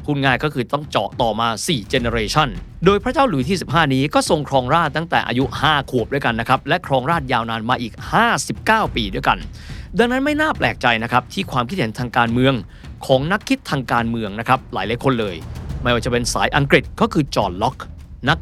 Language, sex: Thai, male